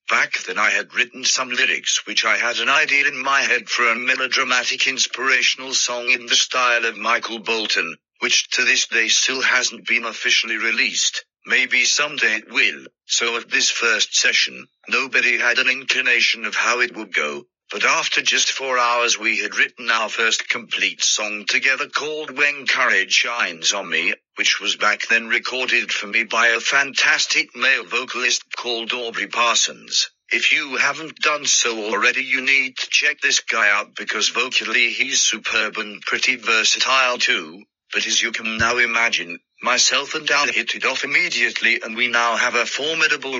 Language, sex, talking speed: English, male, 175 wpm